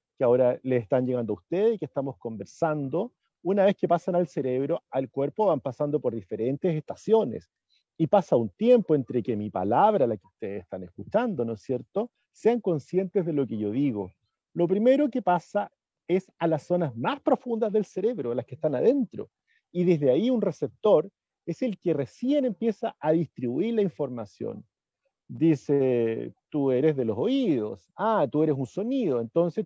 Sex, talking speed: male, 180 wpm